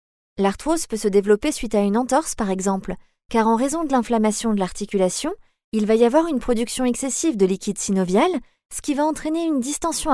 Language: French